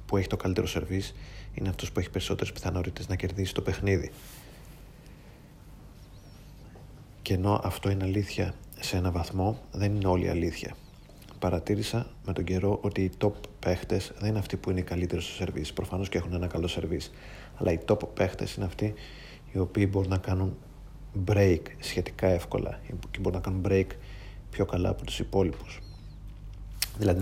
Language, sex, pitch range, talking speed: Greek, male, 95-100 Hz, 165 wpm